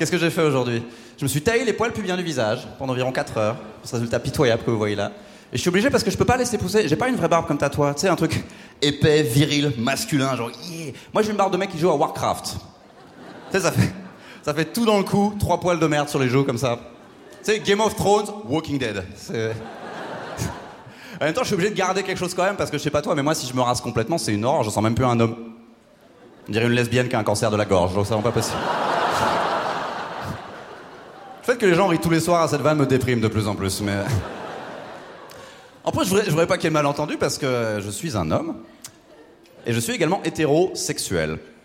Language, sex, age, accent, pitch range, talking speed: French, male, 30-49, French, 115-175 Hz, 265 wpm